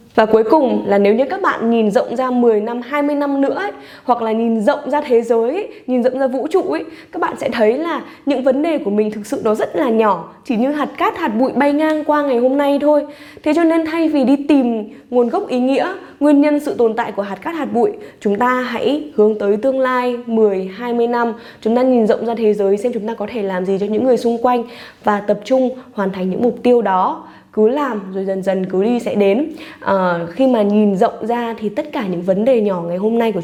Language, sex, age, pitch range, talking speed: Vietnamese, female, 10-29, 210-270 Hz, 260 wpm